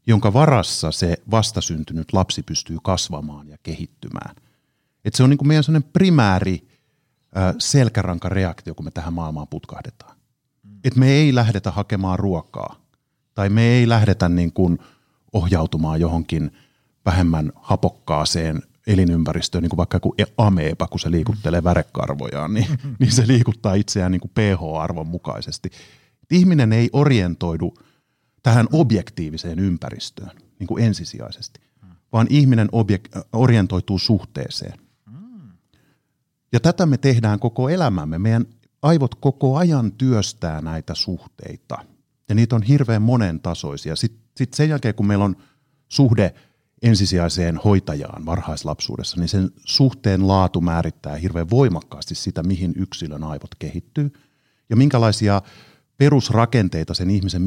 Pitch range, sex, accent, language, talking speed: 85-130 Hz, male, native, Finnish, 120 wpm